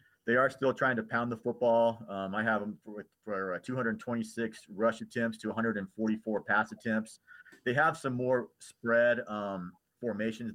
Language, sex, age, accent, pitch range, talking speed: English, male, 40-59, American, 105-115 Hz, 165 wpm